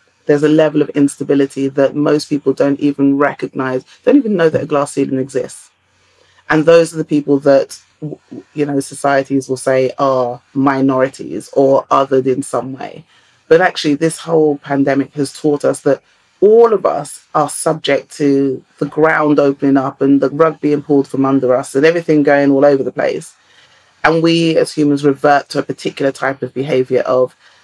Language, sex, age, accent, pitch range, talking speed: English, female, 30-49, British, 135-160 Hz, 180 wpm